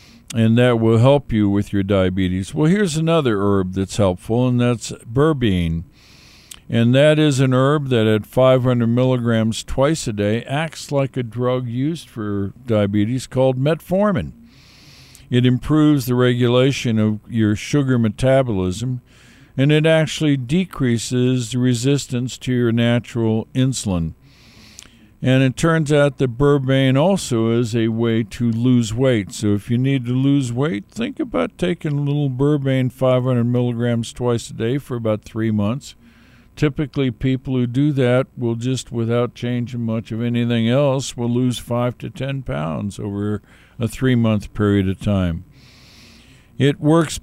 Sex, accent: male, American